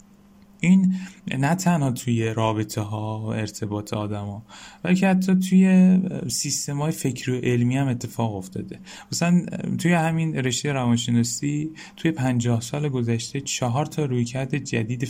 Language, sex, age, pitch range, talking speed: Persian, male, 10-29, 115-150 Hz, 135 wpm